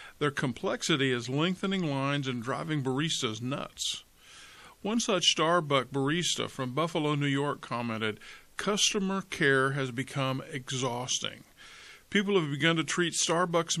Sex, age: male, 50-69